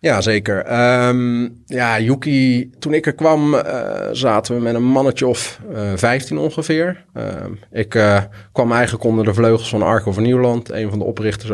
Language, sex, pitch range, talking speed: Dutch, male, 100-120 Hz, 180 wpm